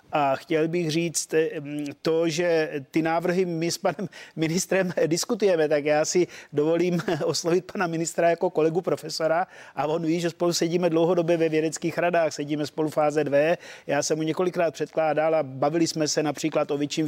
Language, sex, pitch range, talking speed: Czech, male, 150-175 Hz, 170 wpm